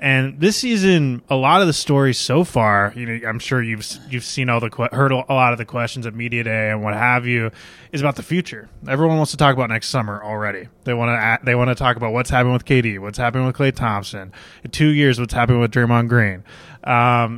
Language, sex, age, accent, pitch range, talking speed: English, male, 20-39, American, 110-130 Hz, 240 wpm